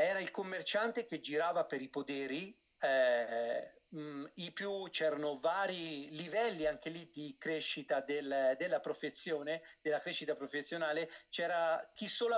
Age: 40-59